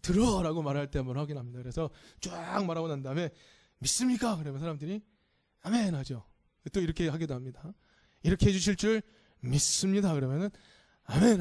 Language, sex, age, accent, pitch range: Korean, male, 20-39, native, 135-200 Hz